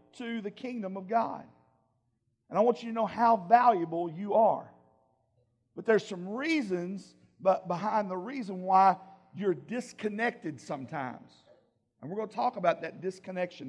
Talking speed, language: 155 wpm, English